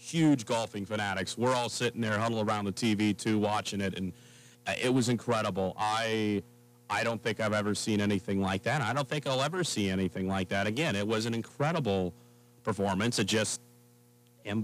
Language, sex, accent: English, male, American